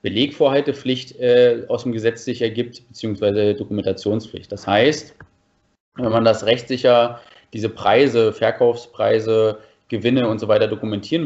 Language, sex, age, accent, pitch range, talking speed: German, male, 30-49, German, 105-125 Hz, 125 wpm